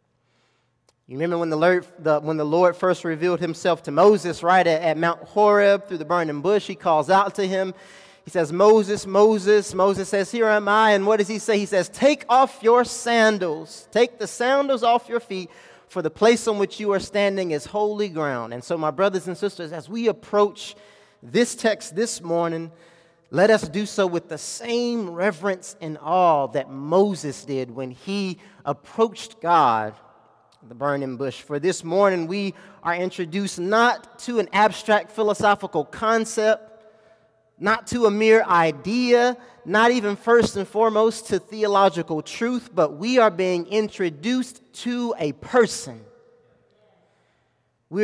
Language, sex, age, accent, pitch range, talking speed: English, male, 30-49, American, 170-215 Hz, 160 wpm